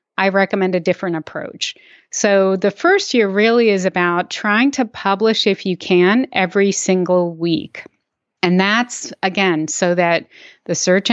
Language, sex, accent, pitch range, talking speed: English, female, American, 185-220 Hz, 150 wpm